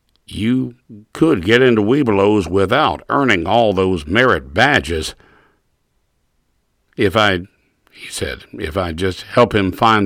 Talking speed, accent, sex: 125 wpm, American, male